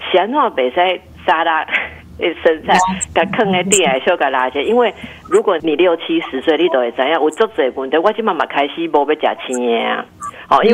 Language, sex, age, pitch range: Chinese, female, 50-69, 140-190 Hz